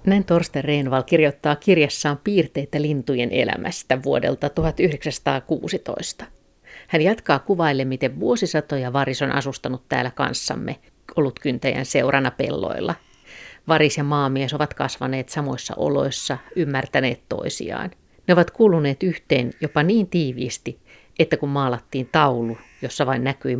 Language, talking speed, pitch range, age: Finnish, 120 wpm, 130-155 Hz, 50-69